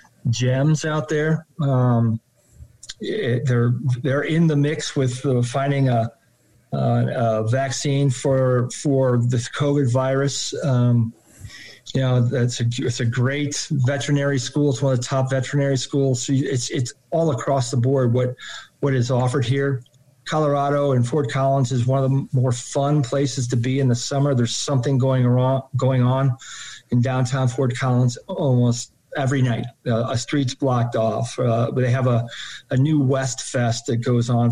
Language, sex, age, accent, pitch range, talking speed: English, male, 40-59, American, 120-140 Hz, 170 wpm